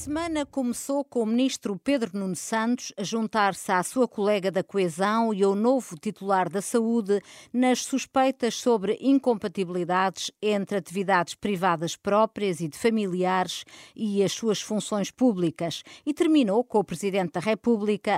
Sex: female